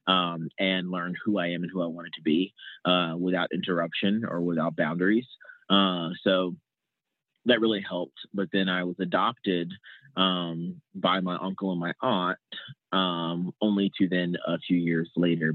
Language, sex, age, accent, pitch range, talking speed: English, male, 30-49, American, 85-95 Hz, 165 wpm